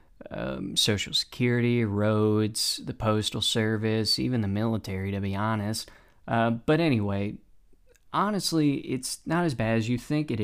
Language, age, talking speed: English, 20-39, 145 wpm